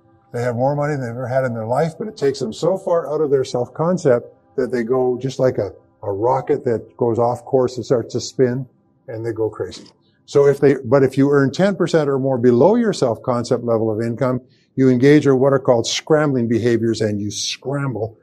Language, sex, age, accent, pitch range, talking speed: English, male, 50-69, American, 120-150 Hz, 225 wpm